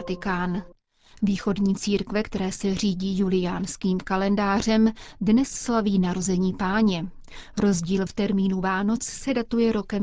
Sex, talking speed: female, 110 wpm